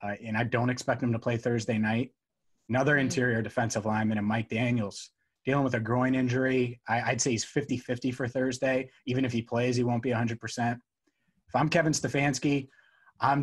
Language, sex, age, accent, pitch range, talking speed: English, male, 30-49, American, 120-140 Hz, 195 wpm